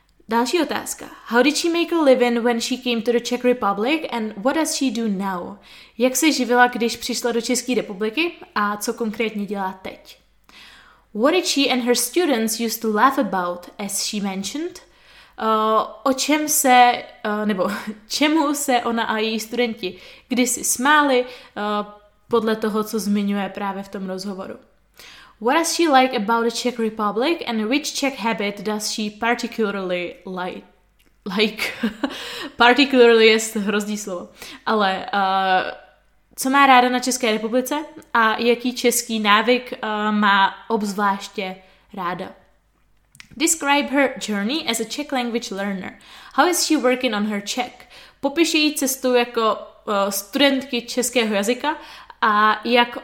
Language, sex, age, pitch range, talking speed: Czech, female, 20-39, 210-260 Hz, 140 wpm